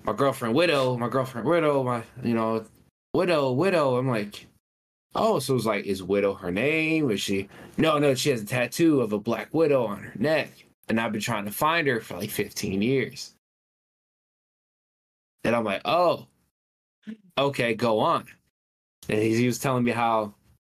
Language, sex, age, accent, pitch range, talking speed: English, male, 20-39, American, 95-120 Hz, 175 wpm